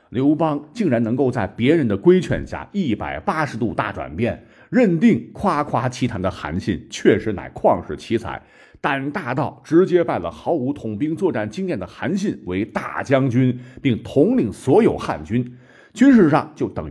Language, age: Chinese, 50-69